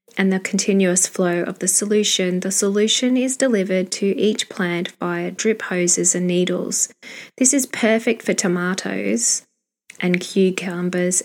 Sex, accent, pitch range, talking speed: female, Australian, 175-220 Hz, 140 wpm